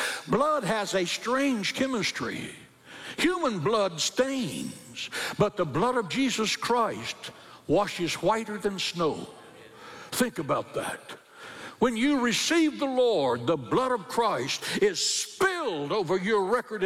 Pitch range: 170-240 Hz